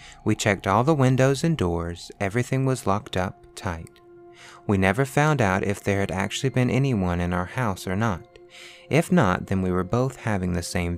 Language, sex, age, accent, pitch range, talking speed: English, male, 20-39, American, 95-120 Hz, 195 wpm